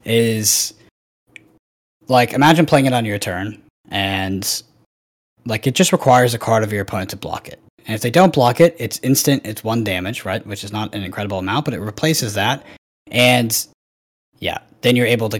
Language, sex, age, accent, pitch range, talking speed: English, male, 10-29, American, 100-120 Hz, 190 wpm